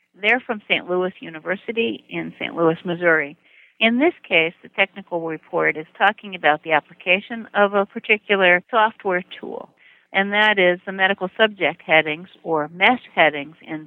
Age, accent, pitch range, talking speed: 60-79, American, 165-205 Hz, 155 wpm